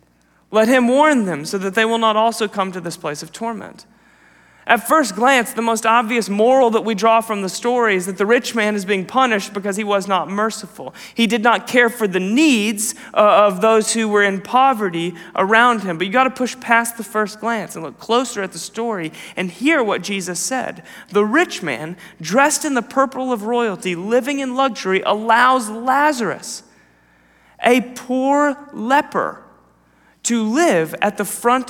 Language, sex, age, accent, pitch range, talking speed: English, male, 30-49, American, 195-245 Hz, 185 wpm